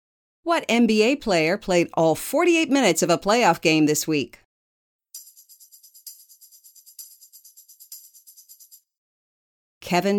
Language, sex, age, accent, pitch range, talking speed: English, female, 50-69, American, 165-230 Hz, 80 wpm